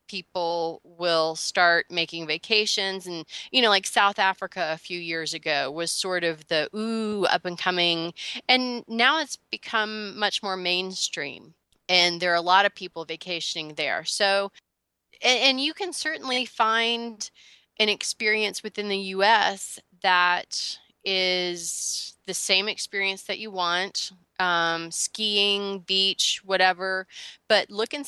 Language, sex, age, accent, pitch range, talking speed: English, female, 30-49, American, 175-210 Hz, 140 wpm